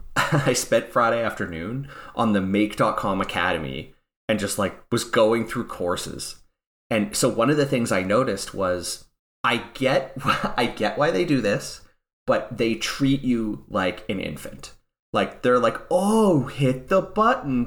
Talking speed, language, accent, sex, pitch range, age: 155 wpm, English, American, male, 100-130 Hz, 30-49